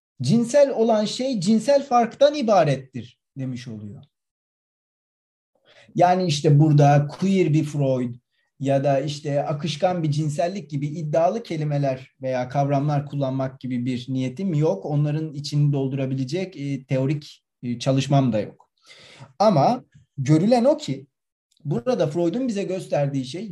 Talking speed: 115 wpm